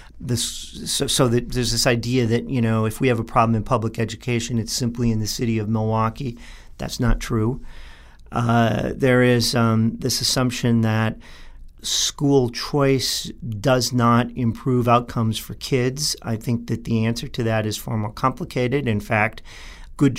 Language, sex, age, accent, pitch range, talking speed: English, male, 40-59, American, 110-130 Hz, 165 wpm